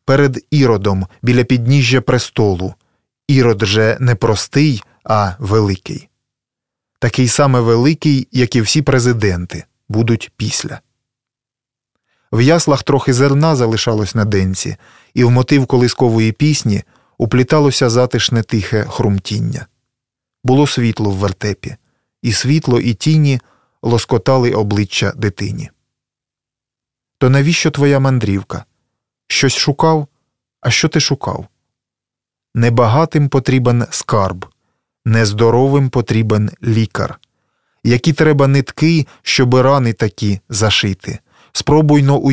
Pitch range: 110-135 Hz